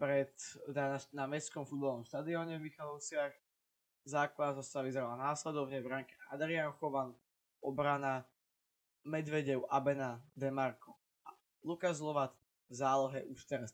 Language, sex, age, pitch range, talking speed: Slovak, male, 20-39, 130-145 Hz, 120 wpm